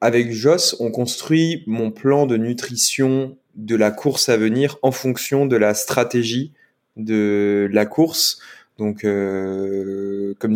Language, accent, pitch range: French, French, 105-130 Hz